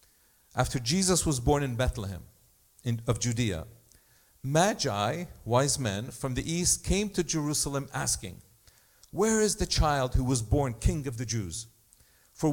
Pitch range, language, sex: 110-150 Hz, English, male